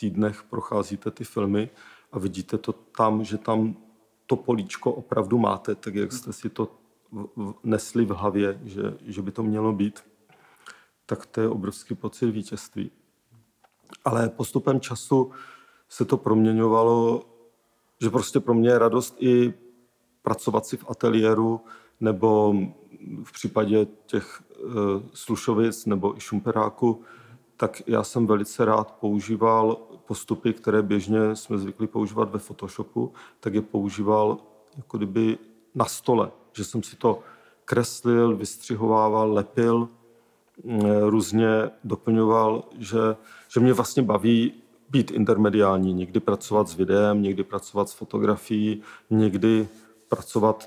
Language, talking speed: Czech, 125 wpm